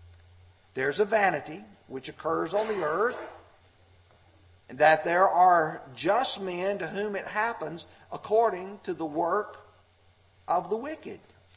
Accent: American